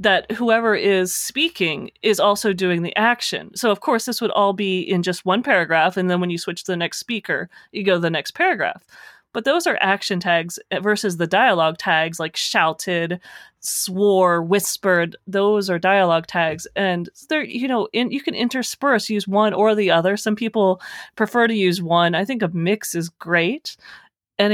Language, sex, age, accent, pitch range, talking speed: English, female, 30-49, American, 180-230 Hz, 185 wpm